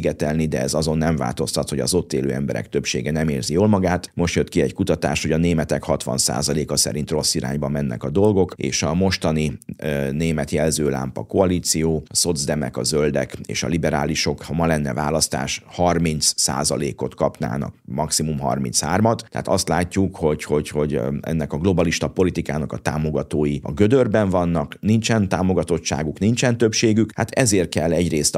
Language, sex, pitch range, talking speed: Hungarian, male, 75-95 Hz, 165 wpm